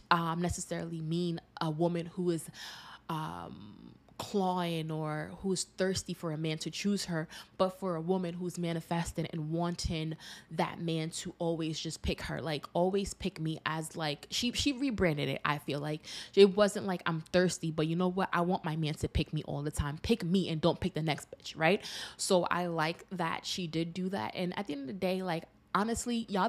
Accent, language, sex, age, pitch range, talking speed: American, English, female, 20-39, 160-190 Hz, 210 wpm